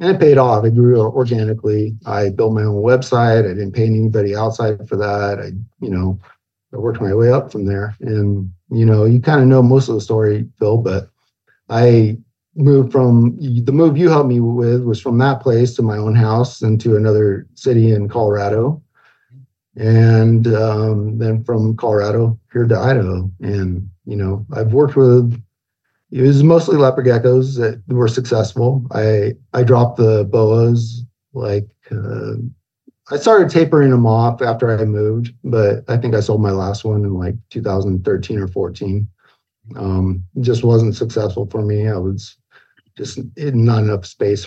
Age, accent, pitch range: 50-69, American, 105-125 Hz